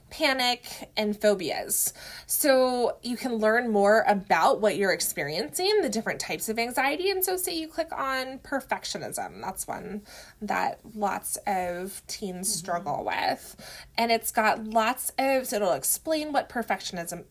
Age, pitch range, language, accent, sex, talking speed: 20-39, 180-240 Hz, English, American, female, 145 wpm